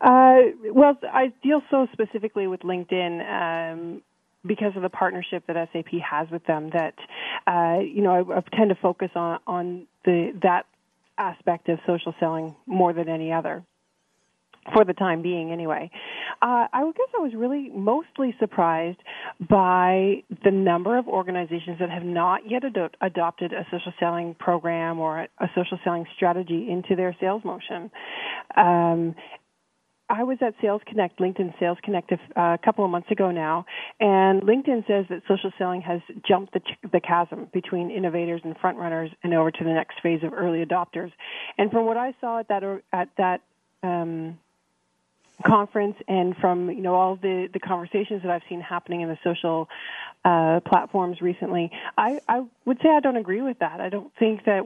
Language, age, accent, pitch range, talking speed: English, 30-49, American, 170-205 Hz, 175 wpm